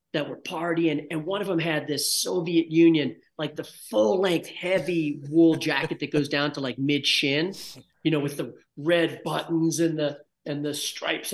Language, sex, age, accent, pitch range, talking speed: English, male, 40-59, American, 150-190 Hz, 190 wpm